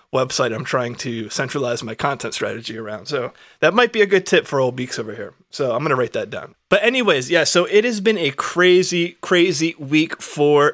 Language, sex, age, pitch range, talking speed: English, male, 20-39, 130-155 Hz, 225 wpm